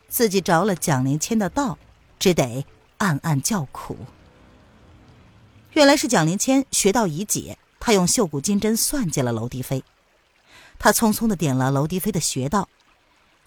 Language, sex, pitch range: Chinese, female, 145-225 Hz